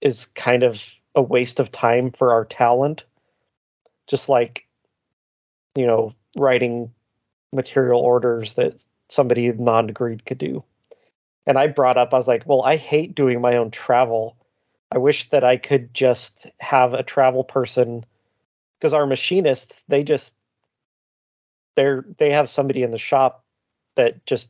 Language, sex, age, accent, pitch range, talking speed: English, male, 30-49, American, 120-140 Hz, 150 wpm